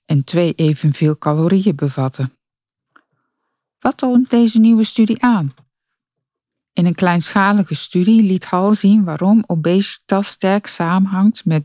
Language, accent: Dutch, Dutch